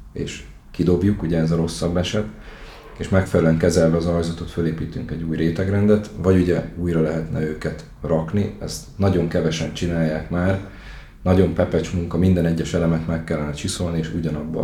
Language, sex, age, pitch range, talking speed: Hungarian, male, 30-49, 80-90 Hz, 155 wpm